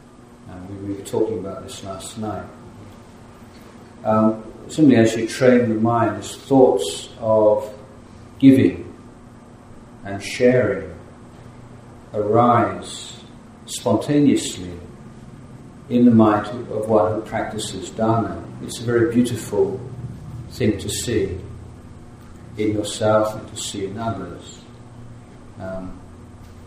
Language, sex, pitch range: Thai, male, 100-120 Hz